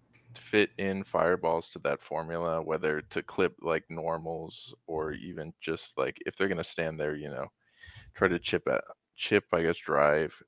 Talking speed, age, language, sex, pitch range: 180 wpm, 20-39, English, male, 85-115 Hz